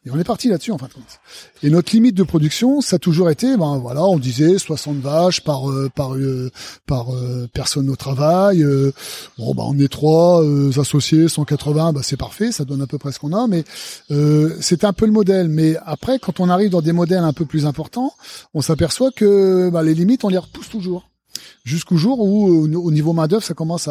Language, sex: French, male